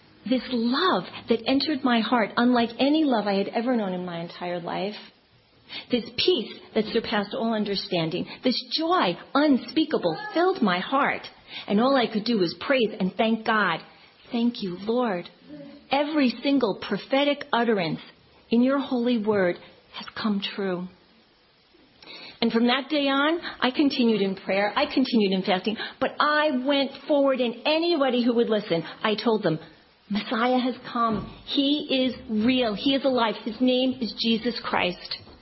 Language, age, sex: English, 40-59, female